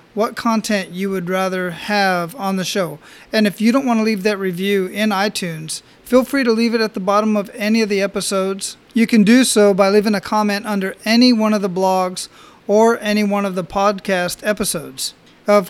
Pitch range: 190-215 Hz